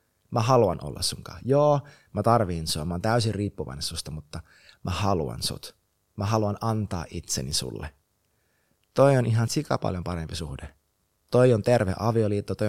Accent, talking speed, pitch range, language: native, 160 wpm, 85-120 Hz, Finnish